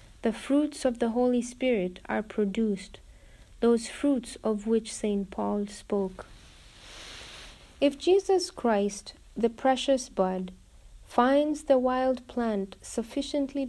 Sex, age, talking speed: female, 50-69, 115 wpm